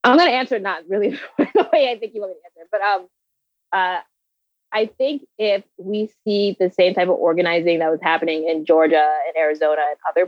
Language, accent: English, American